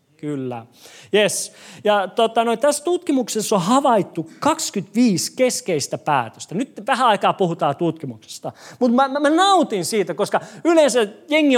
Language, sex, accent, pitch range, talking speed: Finnish, male, native, 160-235 Hz, 135 wpm